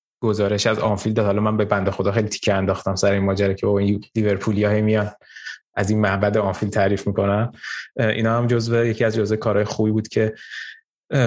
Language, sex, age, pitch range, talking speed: Persian, male, 20-39, 100-115 Hz, 185 wpm